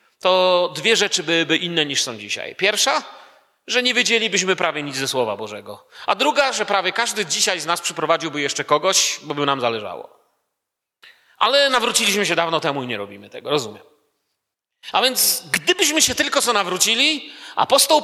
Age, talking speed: 40-59, 165 wpm